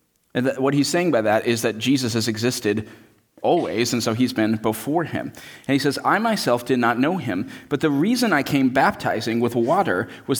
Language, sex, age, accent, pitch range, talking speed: English, male, 30-49, American, 115-150 Hz, 210 wpm